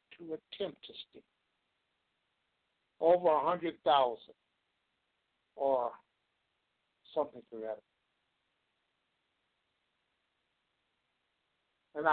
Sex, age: male, 60-79